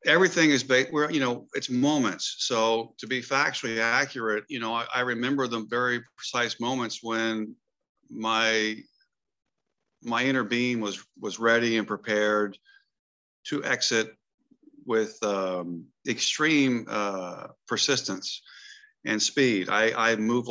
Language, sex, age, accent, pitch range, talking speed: English, male, 50-69, American, 105-125 Hz, 130 wpm